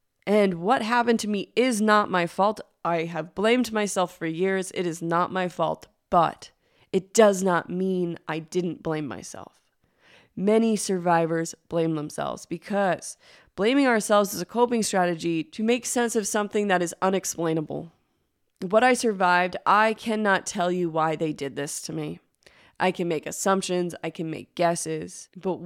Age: 20-39